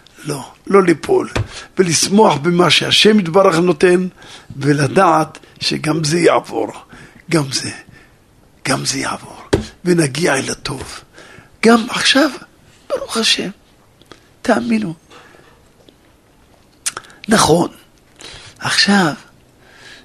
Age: 60-79